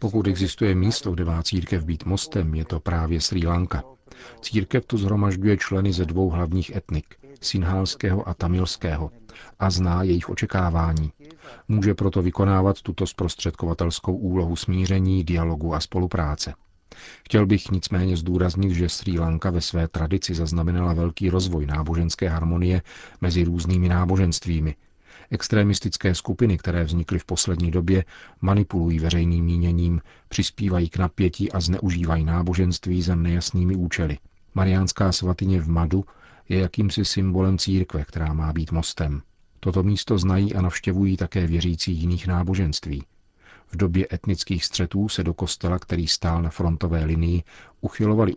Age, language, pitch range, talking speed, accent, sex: 40-59, Czech, 85-95 Hz, 135 wpm, native, male